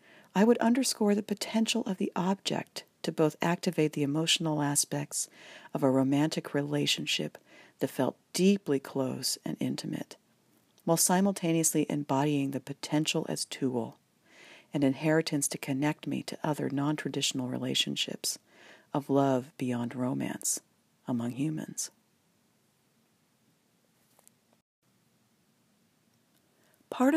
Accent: American